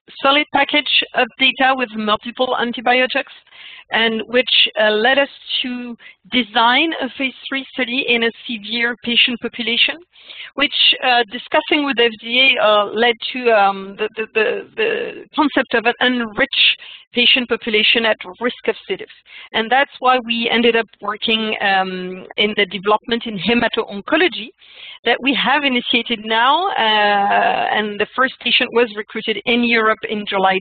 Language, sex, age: English, female, 40-59